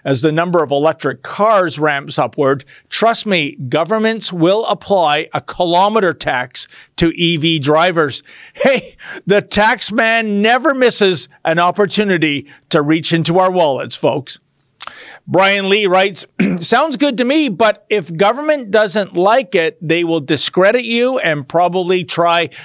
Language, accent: English, American